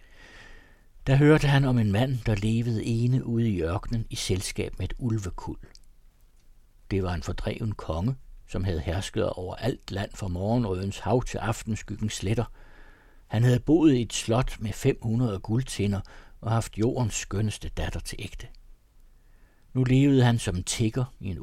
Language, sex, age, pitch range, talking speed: Danish, male, 60-79, 95-120 Hz, 160 wpm